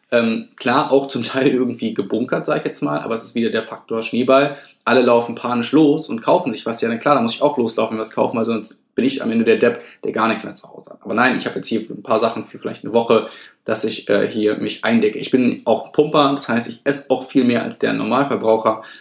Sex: male